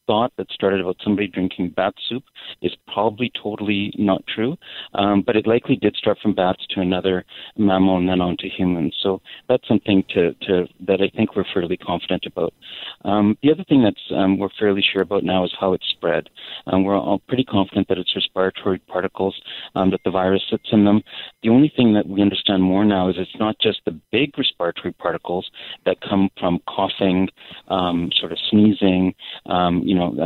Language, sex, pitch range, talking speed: English, male, 95-105 Hz, 190 wpm